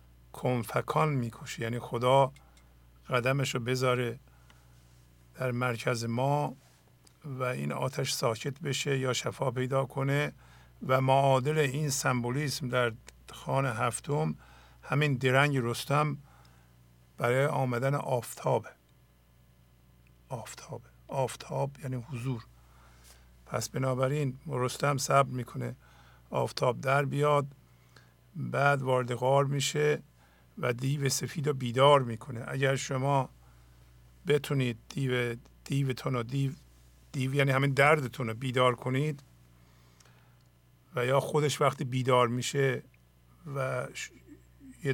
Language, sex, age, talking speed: English, male, 50-69, 100 wpm